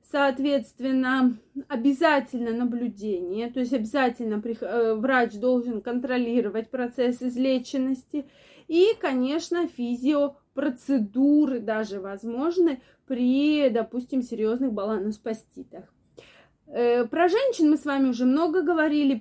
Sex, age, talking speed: female, 20-39, 85 wpm